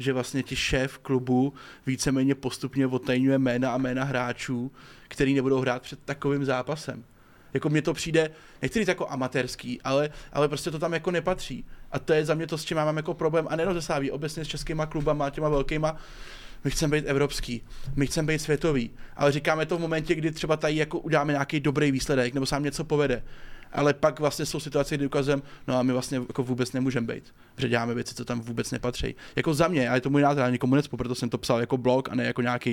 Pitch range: 125-155 Hz